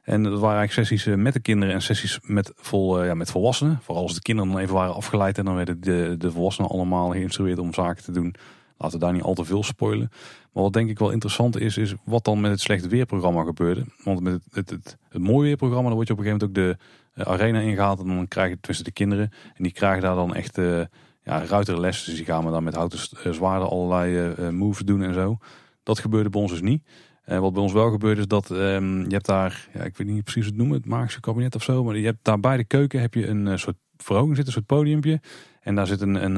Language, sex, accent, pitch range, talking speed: Dutch, male, Dutch, 90-110 Hz, 270 wpm